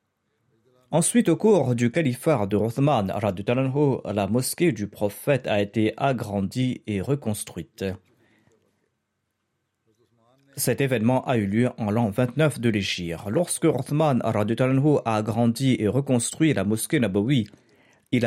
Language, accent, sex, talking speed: French, French, male, 120 wpm